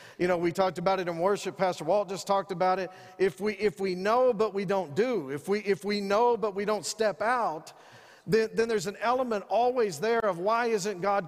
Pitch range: 180-210 Hz